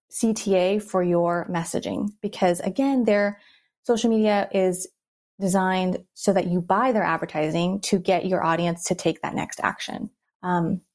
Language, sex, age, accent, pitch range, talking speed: English, female, 20-39, American, 180-210 Hz, 150 wpm